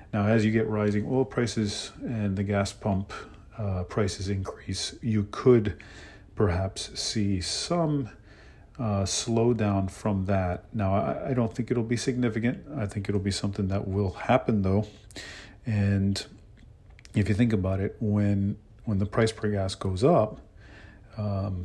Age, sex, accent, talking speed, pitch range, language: 40-59, male, American, 150 wpm, 90-105 Hz, English